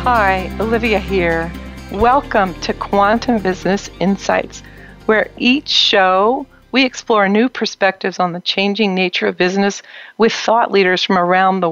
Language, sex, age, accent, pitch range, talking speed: English, female, 50-69, American, 185-220 Hz, 140 wpm